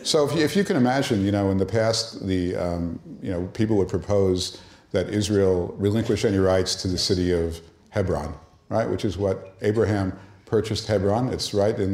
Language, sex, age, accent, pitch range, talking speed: English, male, 50-69, American, 85-105 Hz, 190 wpm